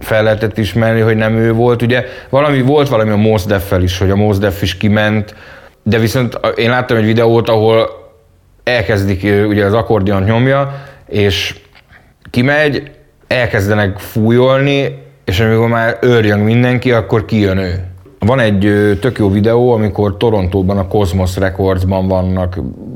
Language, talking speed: Hungarian, 145 wpm